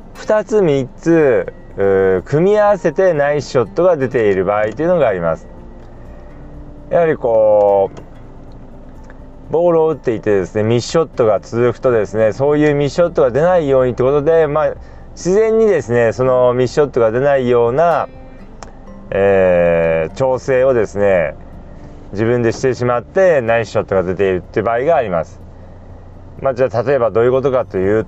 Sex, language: male, Japanese